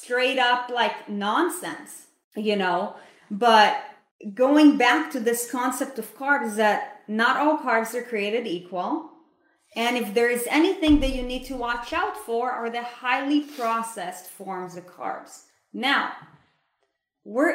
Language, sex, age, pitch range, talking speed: English, female, 30-49, 200-250 Hz, 145 wpm